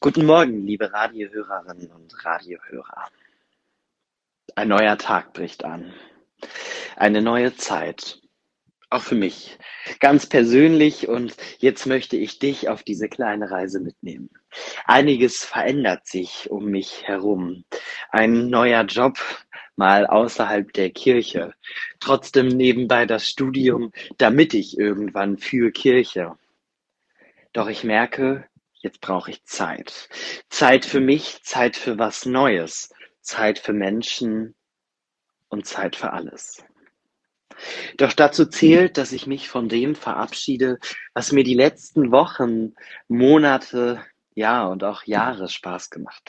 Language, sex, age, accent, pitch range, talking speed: German, male, 30-49, German, 105-140 Hz, 120 wpm